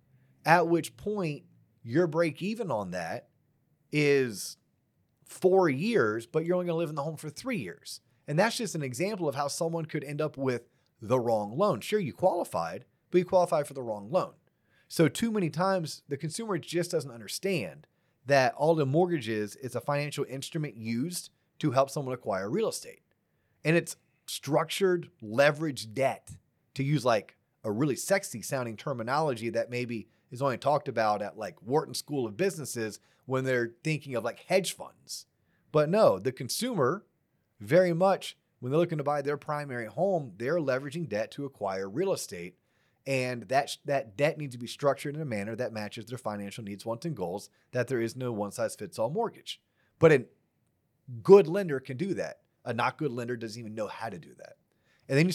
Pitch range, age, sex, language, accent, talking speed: 125-170 Hz, 30-49, male, English, American, 190 wpm